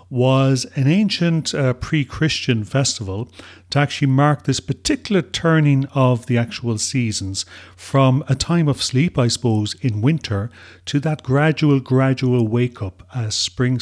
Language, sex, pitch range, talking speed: English, male, 115-145 Hz, 140 wpm